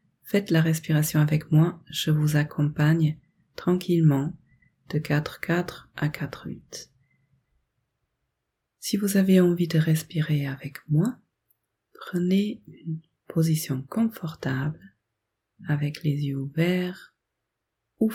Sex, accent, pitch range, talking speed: female, French, 150-185 Hz, 100 wpm